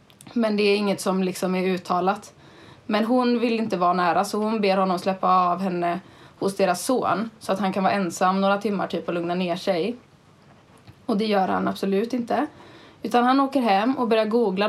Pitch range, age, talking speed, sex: 185-230 Hz, 20-39, 205 wpm, female